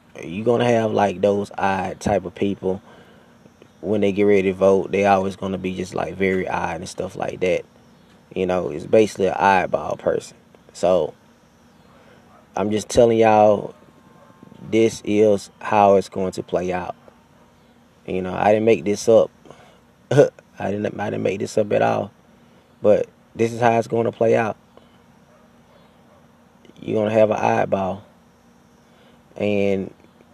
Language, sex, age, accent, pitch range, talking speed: English, male, 20-39, American, 95-110 Hz, 160 wpm